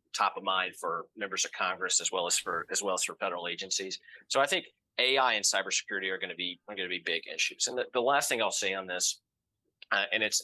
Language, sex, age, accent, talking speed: English, male, 30-49, American, 255 wpm